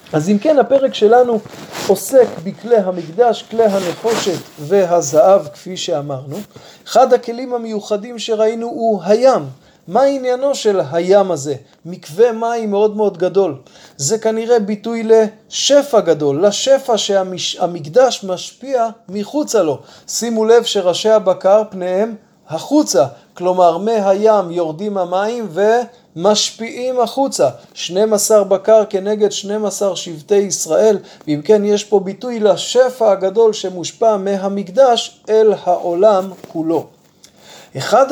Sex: male